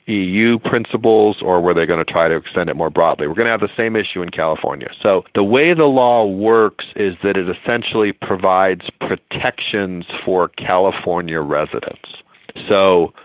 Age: 40-59